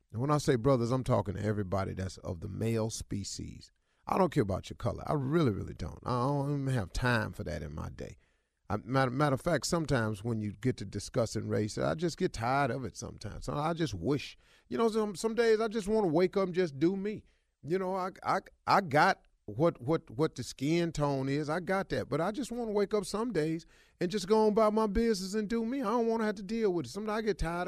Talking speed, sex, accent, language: 260 wpm, male, American, English